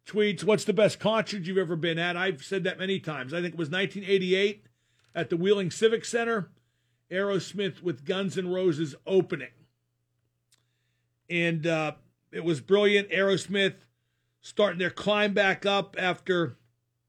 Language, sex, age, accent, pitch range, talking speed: English, male, 50-69, American, 155-200 Hz, 150 wpm